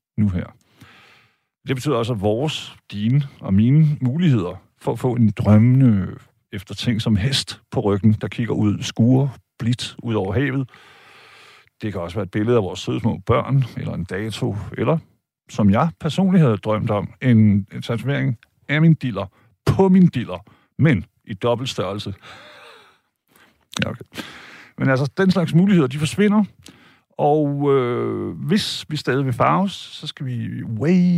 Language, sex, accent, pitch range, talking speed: Danish, male, native, 105-145 Hz, 160 wpm